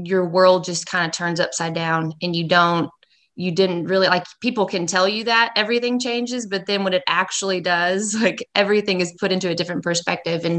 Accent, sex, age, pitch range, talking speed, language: American, female, 20-39, 170-190 Hz, 210 wpm, English